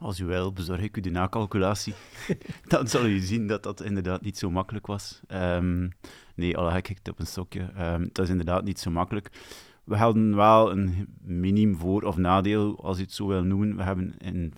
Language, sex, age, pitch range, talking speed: Dutch, male, 30-49, 90-100 Hz, 215 wpm